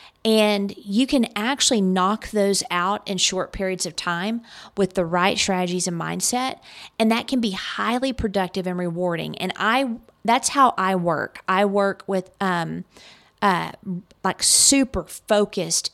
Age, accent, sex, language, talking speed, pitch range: 40-59, American, female, English, 145 wpm, 180-215 Hz